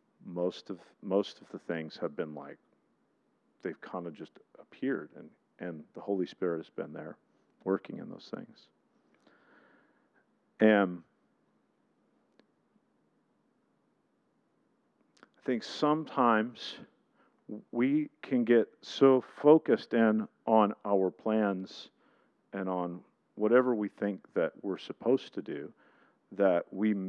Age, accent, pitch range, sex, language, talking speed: 50-69, American, 90-110 Hz, male, English, 115 wpm